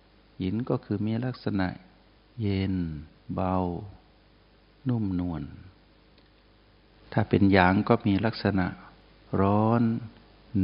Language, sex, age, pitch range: Thai, male, 60-79, 90-110 Hz